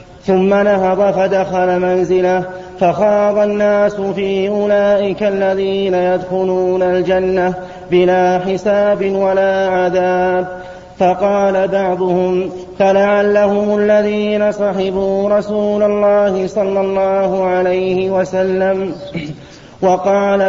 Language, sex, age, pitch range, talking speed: Arabic, male, 30-49, 180-195 Hz, 80 wpm